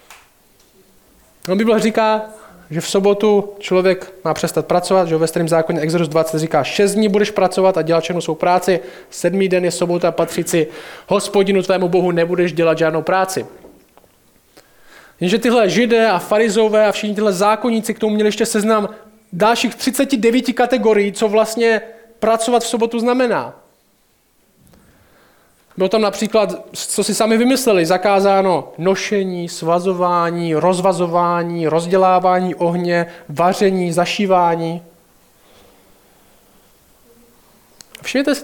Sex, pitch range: male, 175-225 Hz